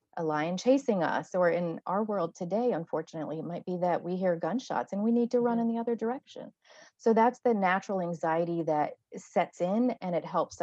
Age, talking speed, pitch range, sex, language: 30-49, 210 wpm, 170-215 Hz, female, English